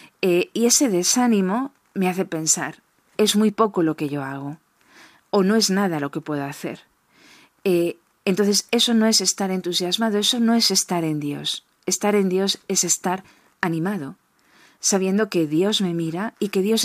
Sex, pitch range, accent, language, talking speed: female, 170-215 Hz, Spanish, Spanish, 175 wpm